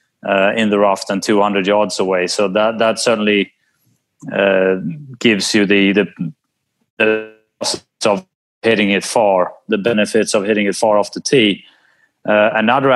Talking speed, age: 155 wpm, 30-49